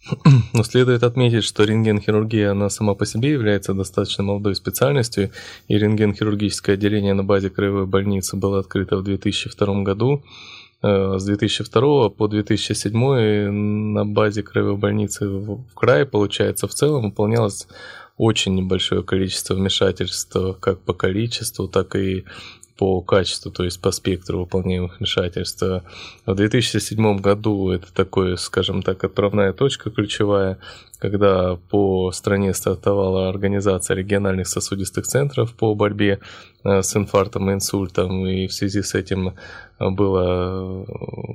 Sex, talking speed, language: male, 125 wpm, Russian